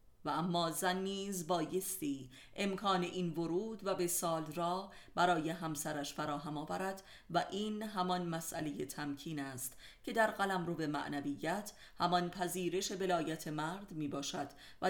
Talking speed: 140 wpm